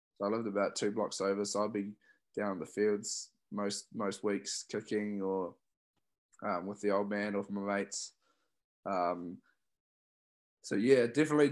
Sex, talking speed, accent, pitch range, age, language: male, 160 wpm, Australian, 100-120 Hz, 20-39, English